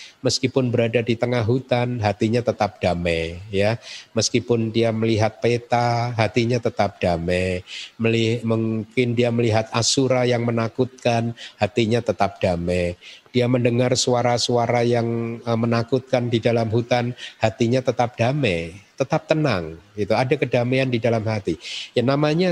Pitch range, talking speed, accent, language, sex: 110-130 Hz, 130 wpm, native, Indonesian, male